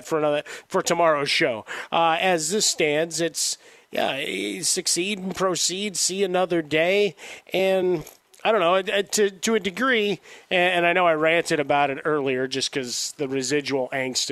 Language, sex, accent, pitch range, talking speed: English, male, American, 140-175 Hz, 160 wpm